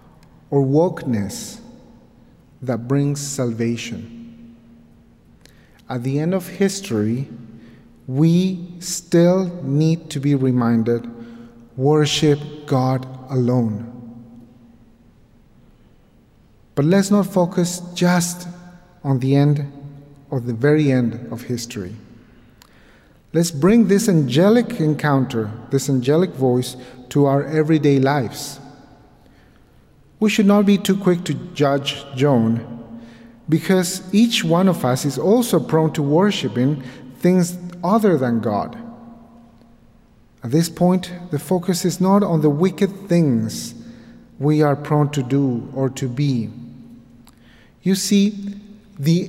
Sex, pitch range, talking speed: male, 125-180 Hz, 110 wpm